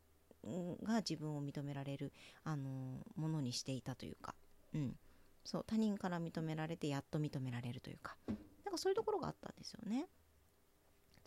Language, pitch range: Japanese, 145-195 Hz